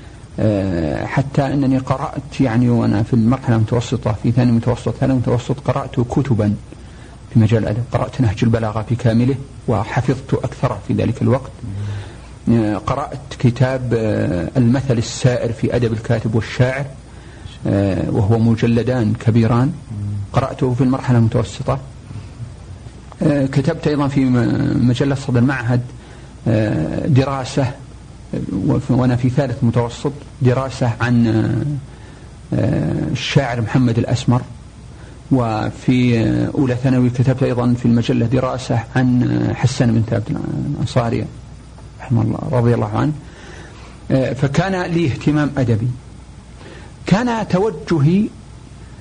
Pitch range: 115-135 Hz